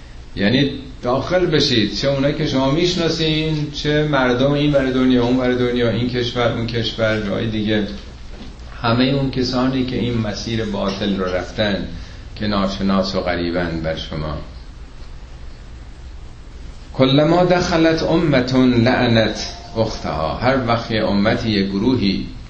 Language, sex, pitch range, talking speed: Persian, male, 75-120 Hz, 125 wpm